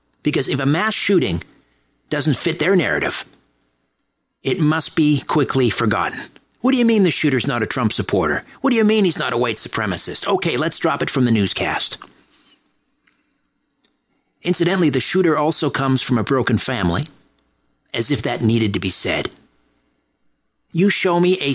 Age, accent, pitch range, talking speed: 50-69, American, 125-165 Hz, 165 wpm